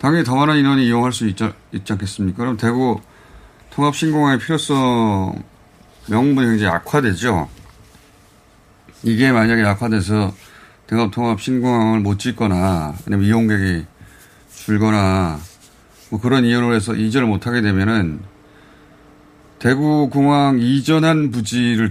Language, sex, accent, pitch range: Korean, male, native, 100-130 Hz